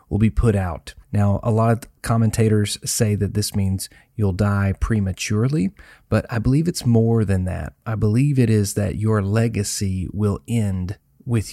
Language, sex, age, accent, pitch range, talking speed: English, male, 30-49, American, 100-115 Hz, 170 wpm